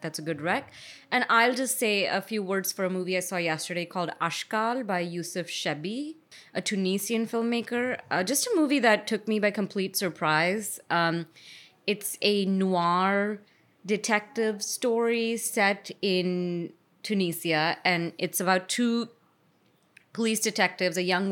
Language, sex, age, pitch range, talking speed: English, female, 20-39, 175-225 Hz, 145 wpm